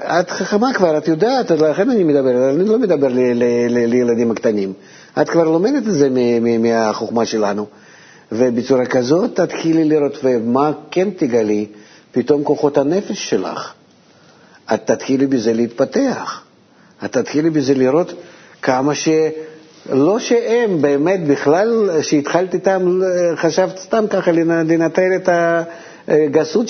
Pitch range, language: 140-185 Hz, Hebrew